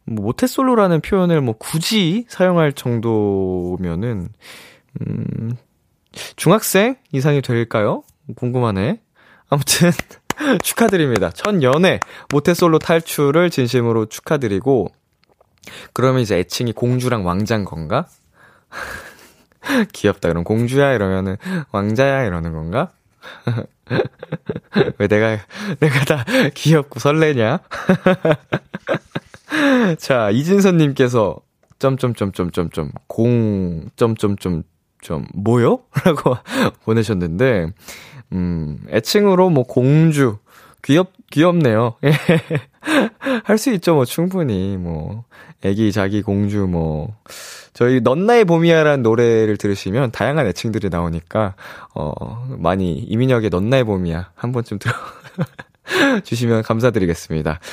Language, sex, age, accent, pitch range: Korean, male, 20-39, native, 105-165 Hz